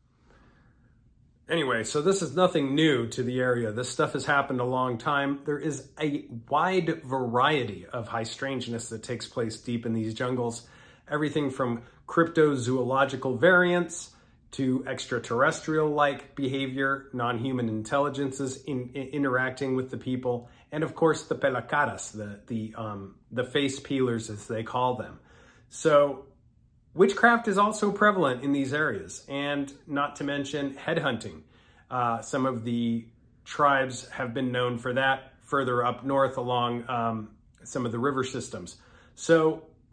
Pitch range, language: 120-145 Hz, English